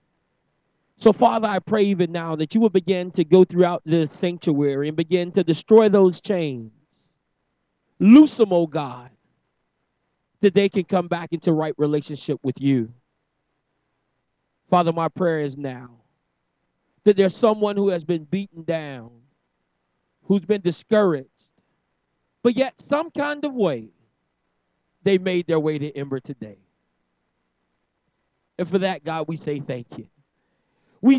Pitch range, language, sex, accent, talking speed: 145-215 Hz, English, male, American, 140 wpm